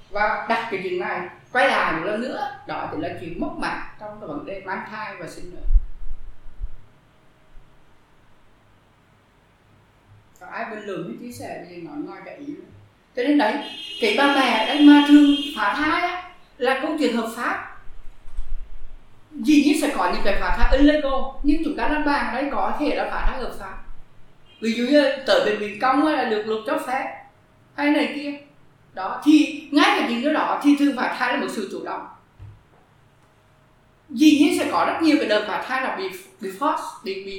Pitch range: 200-290 Hz